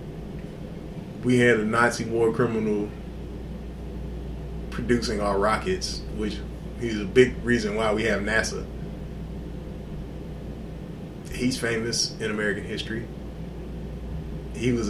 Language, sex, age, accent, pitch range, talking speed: English, male, 20-39, American, 110-170 Hz, 100 wpm